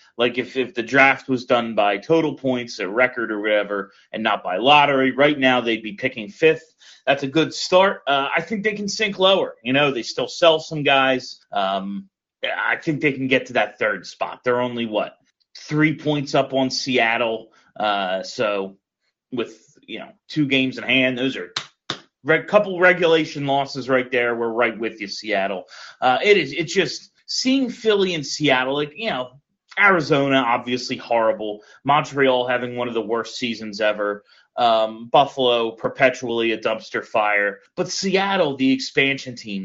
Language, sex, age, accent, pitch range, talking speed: English, male, 30-49, American, 115-160 Hz, 175 wpm